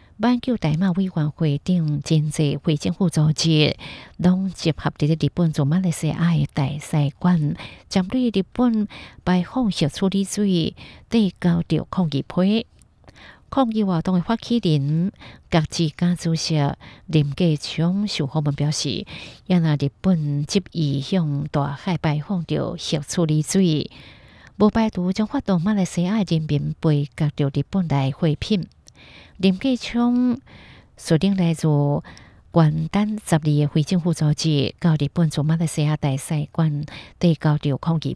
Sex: female